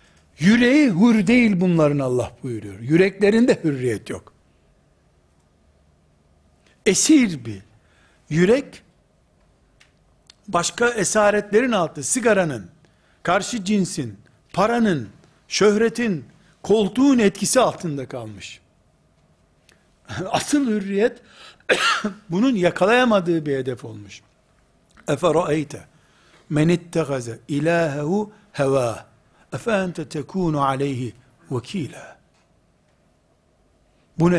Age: 60-79